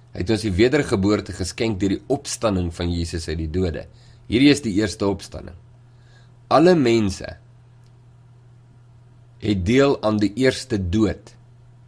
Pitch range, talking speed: 95-120 Hz, 130 wpm